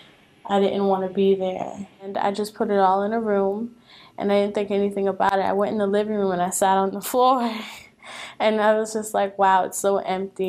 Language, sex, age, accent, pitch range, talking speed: English, female, 10-29, American, 190-215 Hz, 245 wpm